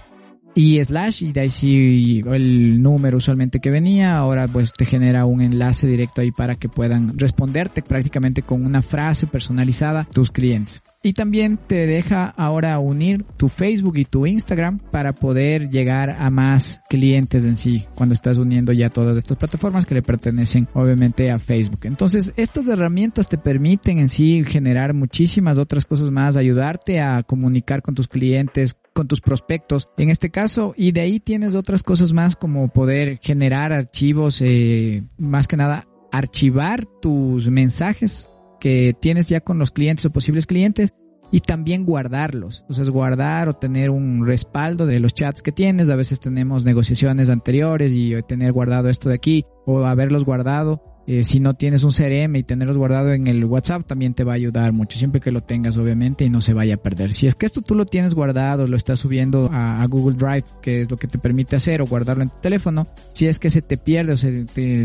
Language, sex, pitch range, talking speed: Spanish, male, 125-160 Hz, 190 wpm